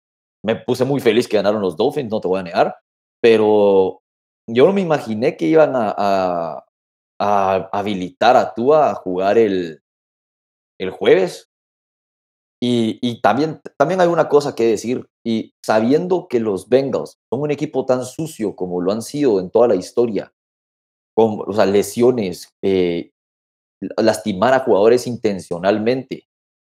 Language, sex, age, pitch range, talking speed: Spanish, male, 30-49, 95-150 Hz, 145 wpm